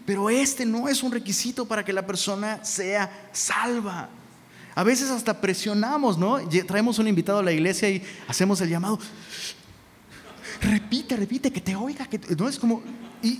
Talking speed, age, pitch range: 165 wpm, 30-49, 155-225 Hz